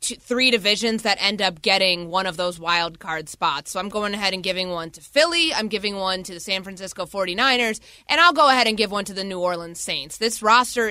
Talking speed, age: 240 wpm, 20-39